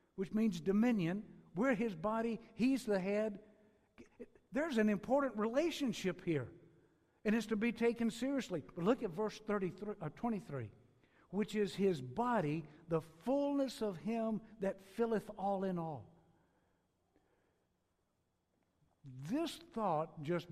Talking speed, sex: 125 wpm, male